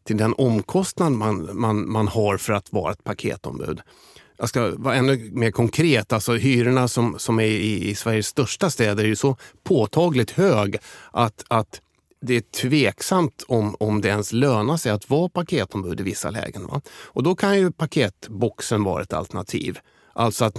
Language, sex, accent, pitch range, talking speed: Swedish, male, native, 105-135 Hz, 175 wpm